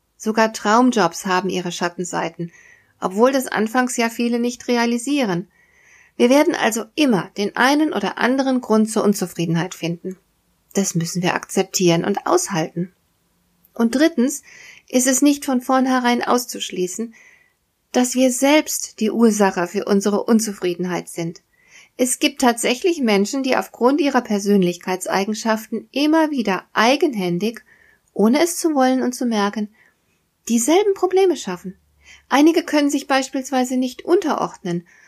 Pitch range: 195-260 Hz